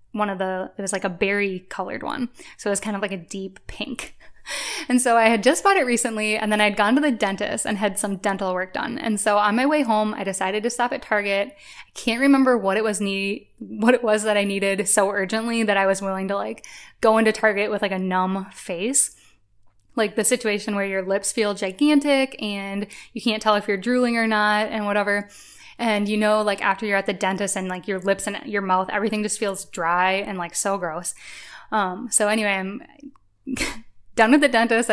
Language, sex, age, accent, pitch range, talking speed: English, female, 10-29, American, 195-225 Hz, 225 wpm